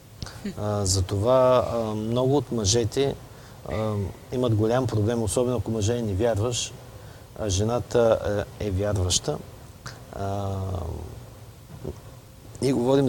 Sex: male